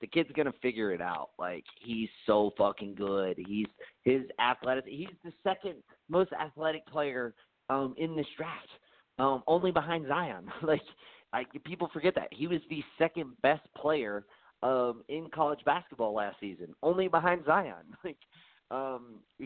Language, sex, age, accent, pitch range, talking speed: English, male, 30-49, American, 115-150 Hz, 155 wpm